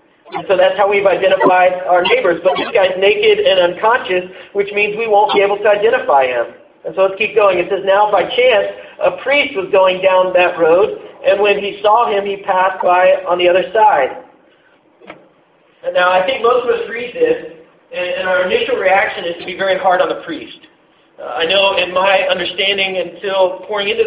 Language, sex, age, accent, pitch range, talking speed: English, male, 40-59, American, 185-285 Hz, 205 wpm